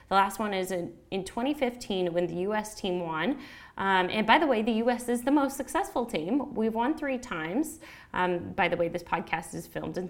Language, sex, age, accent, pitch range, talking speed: English, female, 10-29, American, 180-235 Hz, 215 wpm